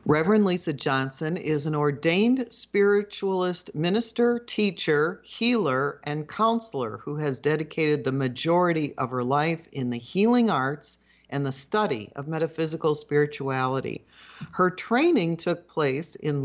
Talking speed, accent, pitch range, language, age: 130 wpm, American, 145-200 Hz, English, 50-69